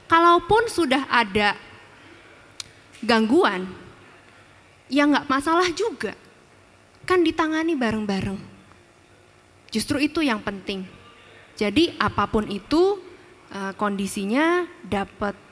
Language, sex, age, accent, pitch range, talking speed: Indonesian, female, 20-39, native, 230-330 Hz, 75 wpm